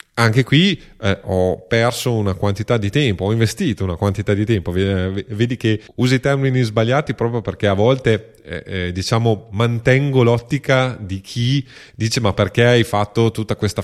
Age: 30-49